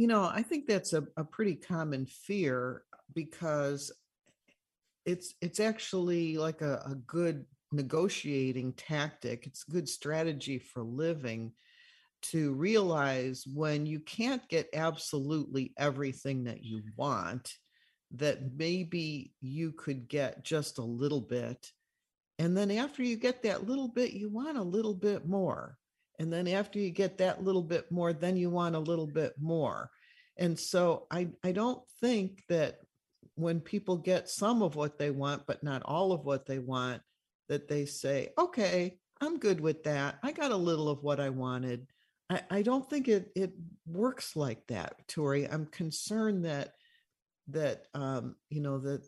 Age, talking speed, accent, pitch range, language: 50-69, 160 wpm, American, 140-190 Hz, English